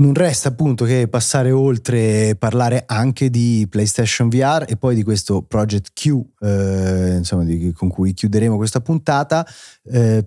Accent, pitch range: native, 100-125 Hz